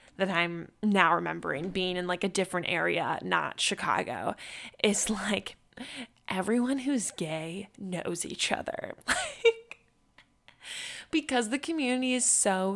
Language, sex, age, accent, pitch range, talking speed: English, female, 10-29, American, 190-265 Hz, 120 wpm